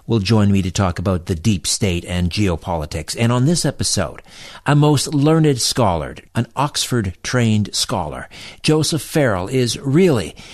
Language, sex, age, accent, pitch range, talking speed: English, male, 60-79, American, 110-140 Hz, 150 wpm